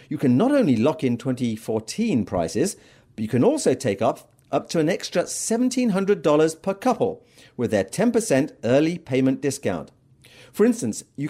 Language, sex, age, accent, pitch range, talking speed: English, male, 40-59, British, 130-190 Hz, 160 wpm